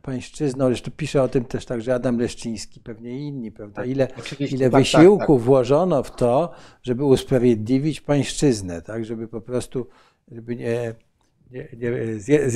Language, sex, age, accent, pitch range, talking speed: Polish, male, 50-69, native, 120-145 Hz, 145 wpm